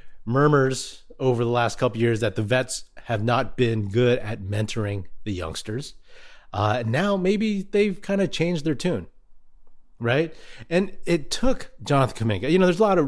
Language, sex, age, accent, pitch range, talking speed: English, male, 30-49, American, 115-145 Hz, 180 wpm